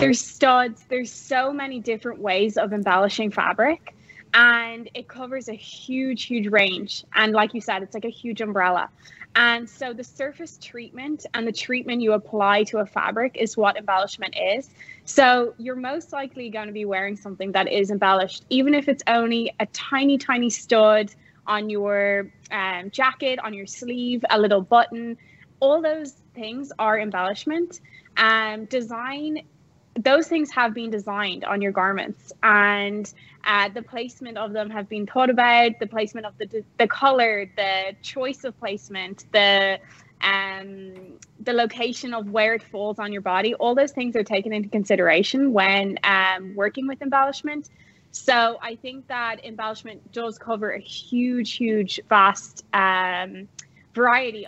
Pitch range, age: 200-245 Hz, 20-39